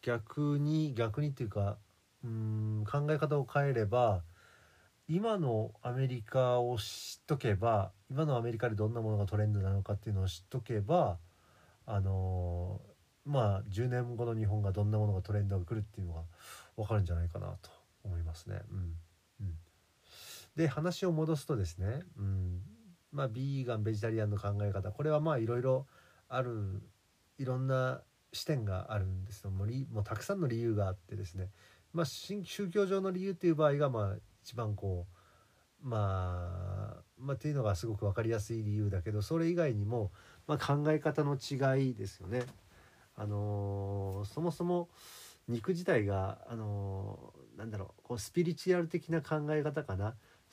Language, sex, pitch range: Japanese, male, 100-135 Hz